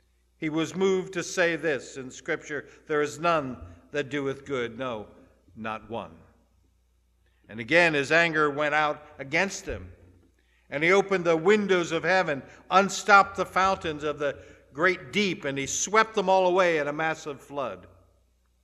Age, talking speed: 60-79, 160 wpm